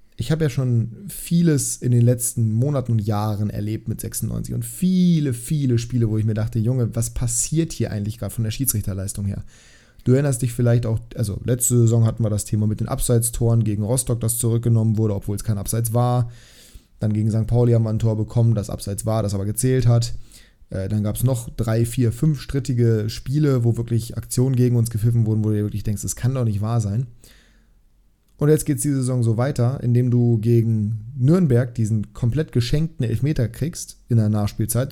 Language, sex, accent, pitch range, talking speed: German, male, German, 110-130 Hz, 205 wpm